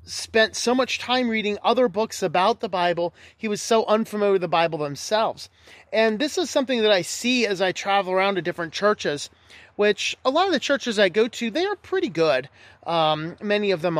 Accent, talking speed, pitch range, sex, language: American, 210 wpm, 160-210 Hz, male, English